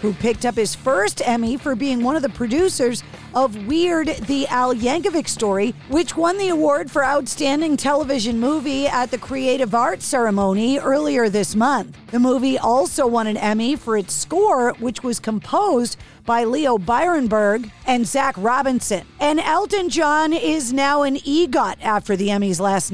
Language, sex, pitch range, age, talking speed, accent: English, female, 235-290 Hz, 50-69, 165 wpm, American